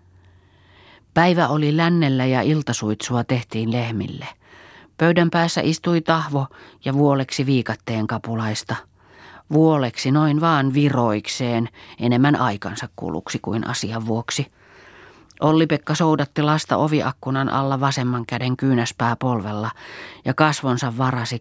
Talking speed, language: 105 wpm, Finnish